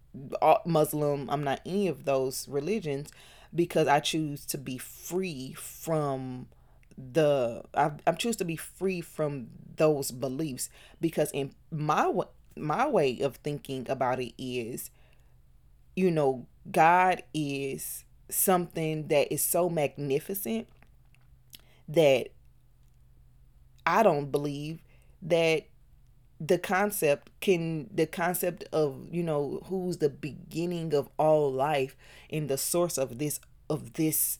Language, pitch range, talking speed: English, 135-170 Hz, 120 wpm